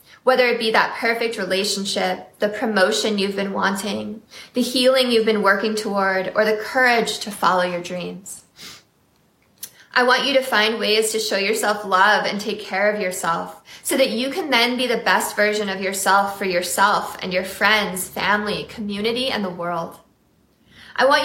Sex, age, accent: female, 20-39, American